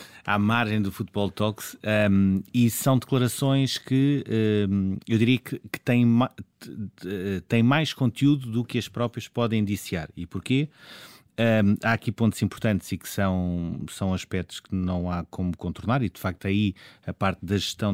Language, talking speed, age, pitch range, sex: Portuguese, 165 wpm, 30-49, 95-110 Hz, male